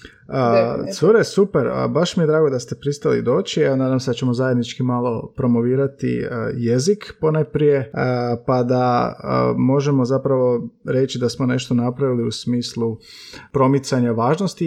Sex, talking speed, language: male, 145 wpm, Croatian